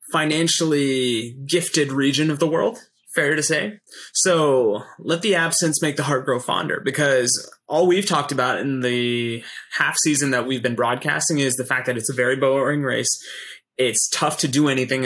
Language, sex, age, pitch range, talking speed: English, male, 20-39, 130-160 Hz, 180 wpm